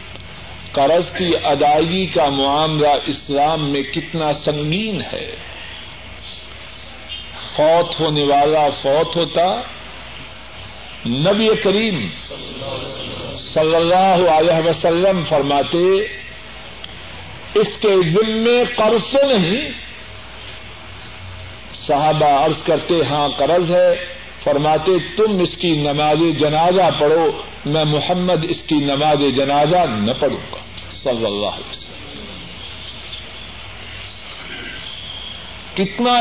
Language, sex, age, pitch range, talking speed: Urdu, male, 50-69, 145-200 Hz, 85 wpm